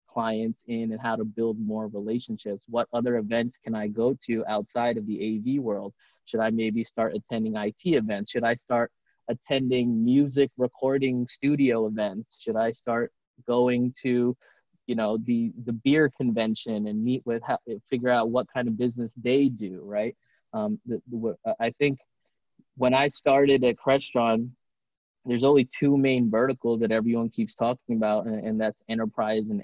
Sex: male